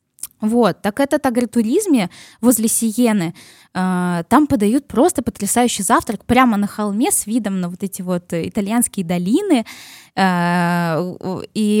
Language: Russian